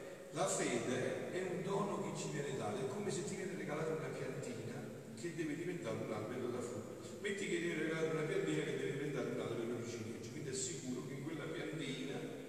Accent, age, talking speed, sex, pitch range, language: native, 50-69, 215 wpm, male, 125-180 Hz, Italian